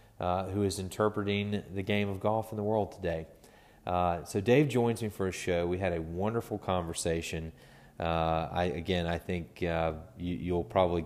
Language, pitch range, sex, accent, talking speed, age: English, 80-90 Hz, male, American, 185 wpm, 30-49